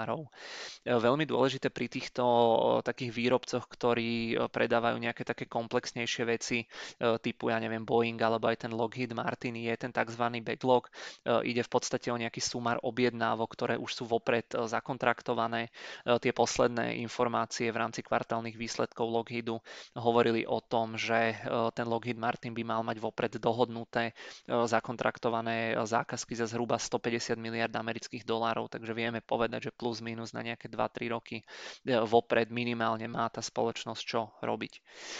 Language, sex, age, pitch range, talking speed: Czech, male, 20-39, 115-120 Hz, 150 wpm